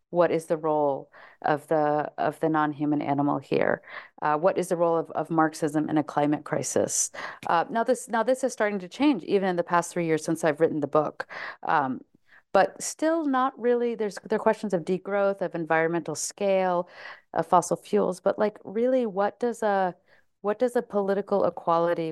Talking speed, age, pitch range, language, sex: 195 wpm, 40-59, 170-230 Hz, English, female